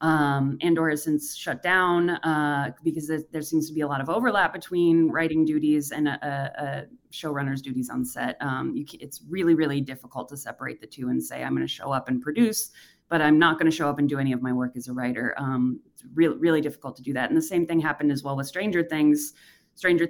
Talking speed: 245 wpm